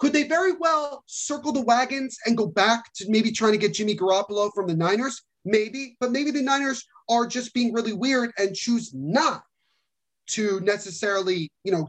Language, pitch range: English, 195-260 Hz